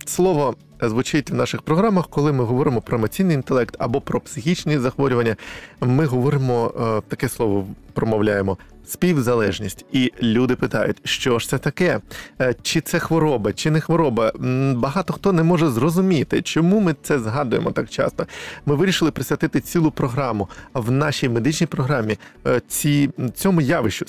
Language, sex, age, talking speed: Ukrainian, male, 20-39, 140 wpm